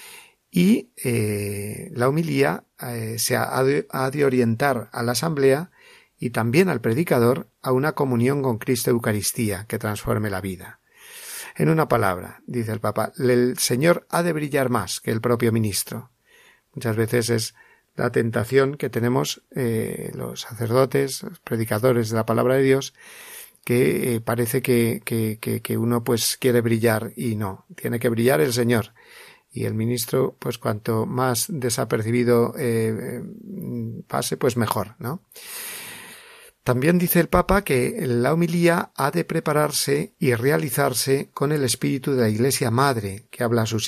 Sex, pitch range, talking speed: male, 115-145 Hz, 155 wpm